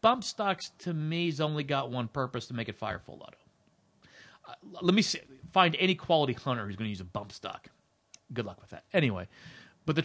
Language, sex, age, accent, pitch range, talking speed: English, male, 40-59, American, 120-155 Hz, 220 wpm